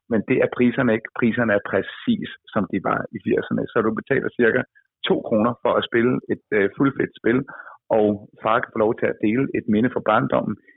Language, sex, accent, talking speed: Danish, male, native, 210 wpm